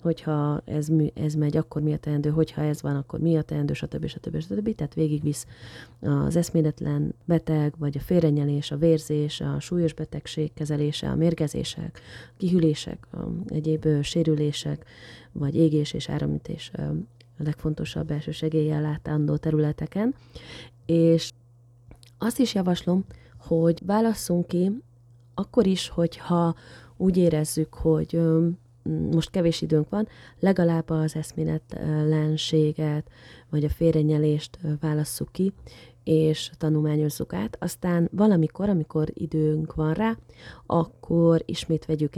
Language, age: Hungarian, 30-49